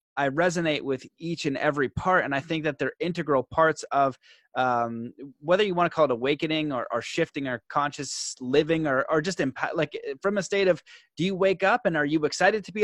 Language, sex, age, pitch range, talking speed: English, male, 20-39, 140-170 Hz, 230 wpm